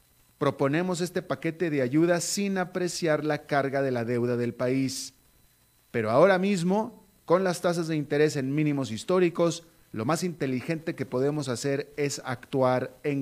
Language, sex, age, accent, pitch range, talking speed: Spanish, male, 40-59, Mexican, 130-175 Hz, 155 wpm